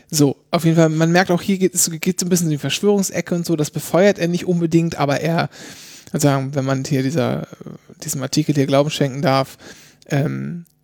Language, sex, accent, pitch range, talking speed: German, male, German, 145-180 Hz, 205 wpm